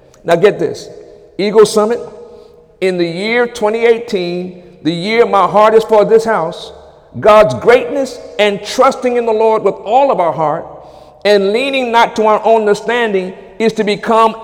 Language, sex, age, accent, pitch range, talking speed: English, male, 50-69, American, 185-240 Hz, 160 wpm